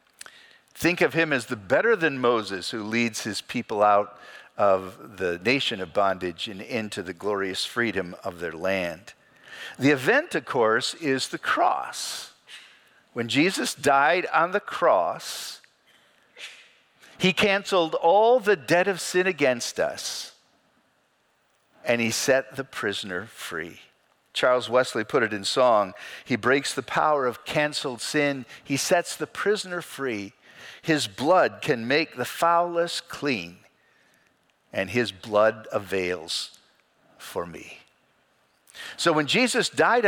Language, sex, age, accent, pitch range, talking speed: English, male, 50-69, American, 115-180 Hz, 135 wpm